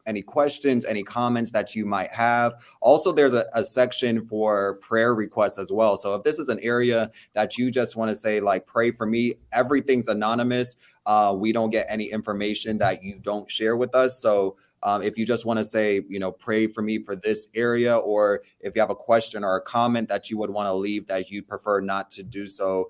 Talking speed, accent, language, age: 220 wpm, American, English, 20-39